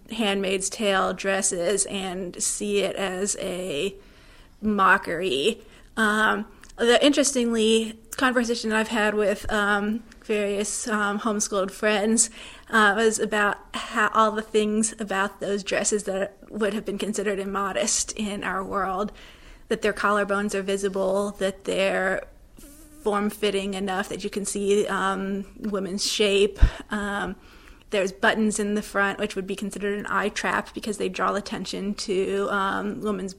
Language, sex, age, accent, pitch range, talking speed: English, female, 30-49, American, 195-215 Hz, 135 wpm